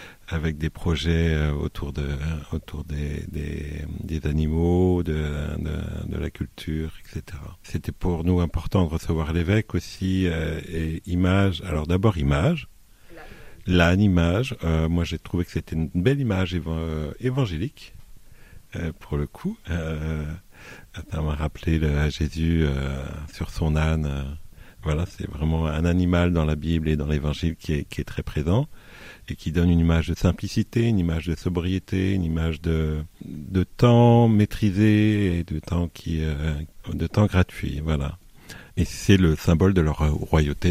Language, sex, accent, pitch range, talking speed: French, male, French, 80-95 Hz, 165 wpm